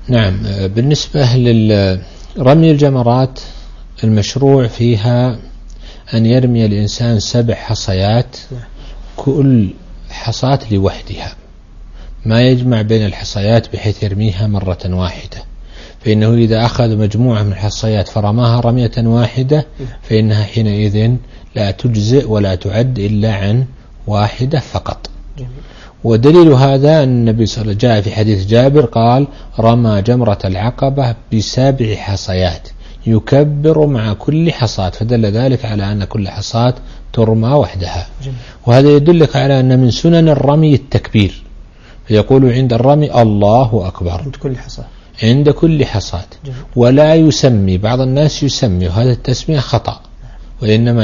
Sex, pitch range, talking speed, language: male, 105-130 Hz, 115 wpm, Arabic